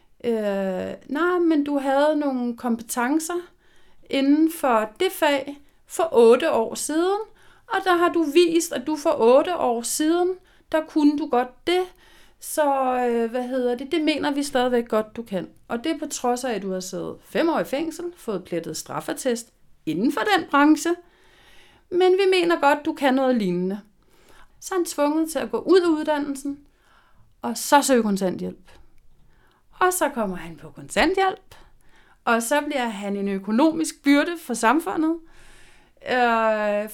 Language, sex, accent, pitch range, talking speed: Danish, female, native, 210-315 Hz, 165 wpm